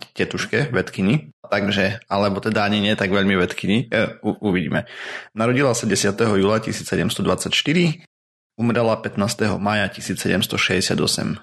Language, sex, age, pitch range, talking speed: Slovak, male, 30-49, 95-115 Hz, 110 wpm